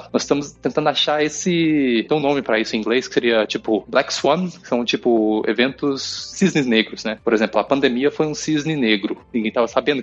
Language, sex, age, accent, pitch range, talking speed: Portuguese, male, 20-39, Brazilian, 120-150 Hz, 210 wpm